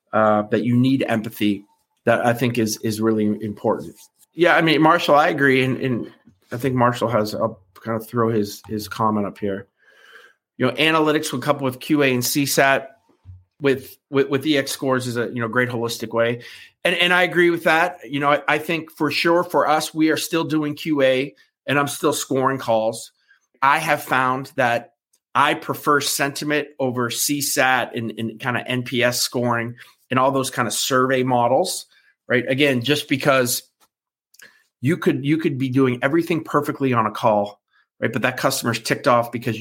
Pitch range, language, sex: 115-145 Hz, English, male